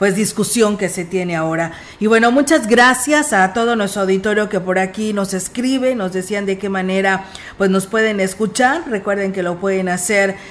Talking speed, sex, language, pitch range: 190 wpm, female, Spanish, 190-225 Hz